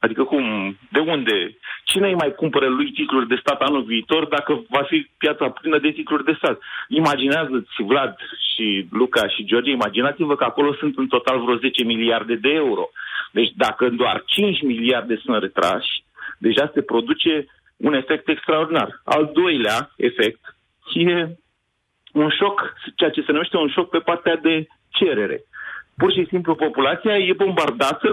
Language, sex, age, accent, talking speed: Romanian, male, 40-59, native, 160 wpm